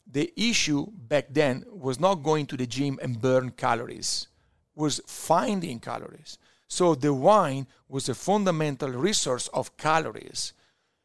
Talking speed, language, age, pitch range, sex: 135 wpm, English, 50-69, 130-165 Hz, male